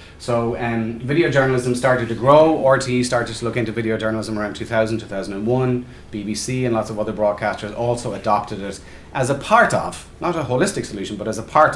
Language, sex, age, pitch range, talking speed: English, male, 30-49, 110-135 Hz, 195 wpm